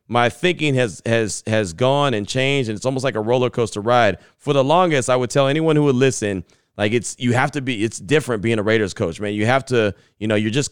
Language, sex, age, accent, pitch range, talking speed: English, male, 30-49, American, 125-160 Hz, 260 wpm